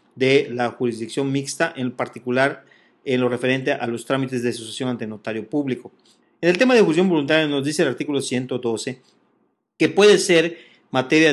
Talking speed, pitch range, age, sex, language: 170 wpm, 125-160 Hz, 40-59, male, English